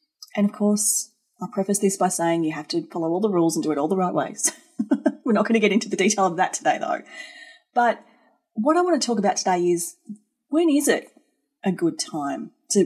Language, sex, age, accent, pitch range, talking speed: English, female, 30-49, Australian, 185-300 Hz, 235 wpm